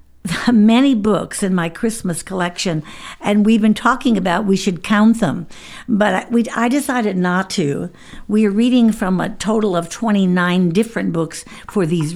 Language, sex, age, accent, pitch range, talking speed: English, female, 60-79, American, 175-215 Hz, 175 wpm